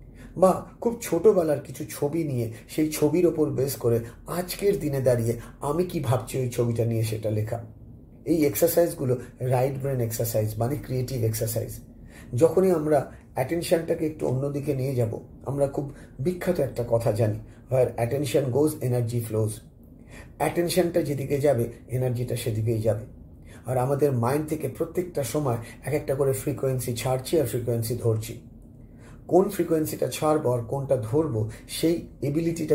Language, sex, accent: Bengali, male, native